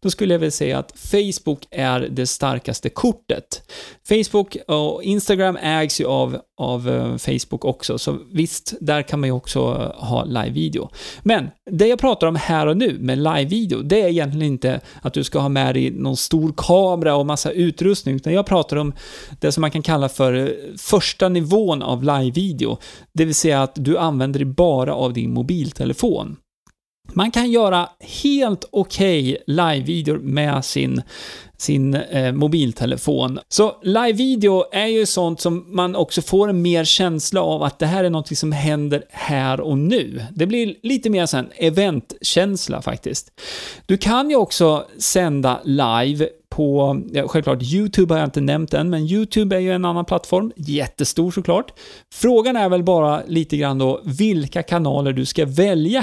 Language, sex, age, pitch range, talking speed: Swedish, male, 30-49, 140-190 Hz, 165 wpm